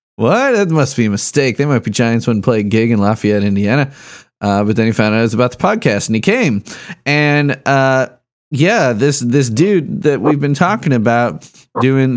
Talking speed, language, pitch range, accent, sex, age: 210 wpm, English, 110-145 Hz, American, male, 30-49